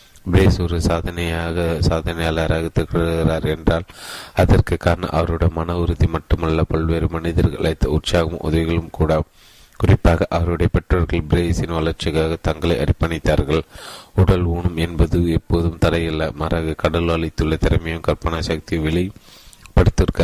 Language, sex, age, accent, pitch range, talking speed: Tamil, male, 30-49, native, 80-90 Hz, 100 wpm